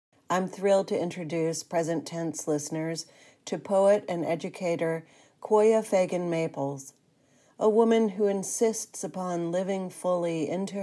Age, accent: 40-59, American